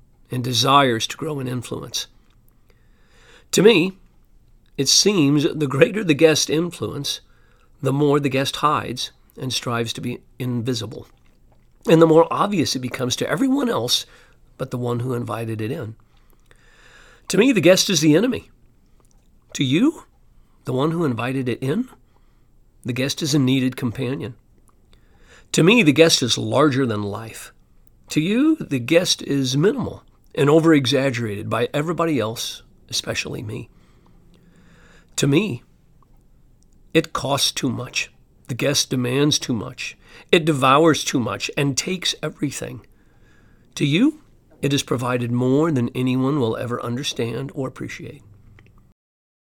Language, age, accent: English, 50-69, American